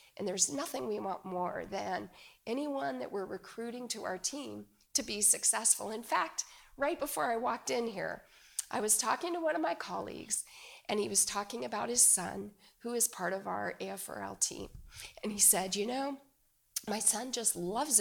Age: 40-59